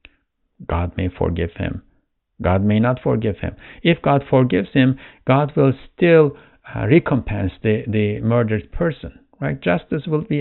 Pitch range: 100-135 Hz